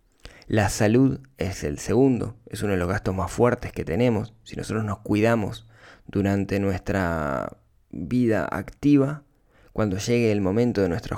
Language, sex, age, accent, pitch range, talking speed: Spanish, male, 20-39, Argentinian, 95-120 Hz, 150 wpm